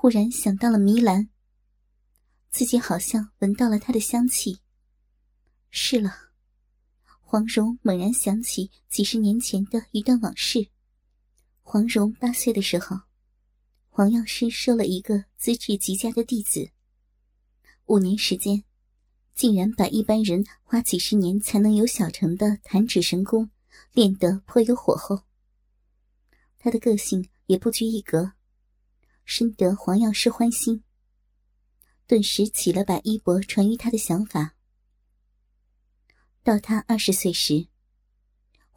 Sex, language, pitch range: male, Chinese, 165-225 Hz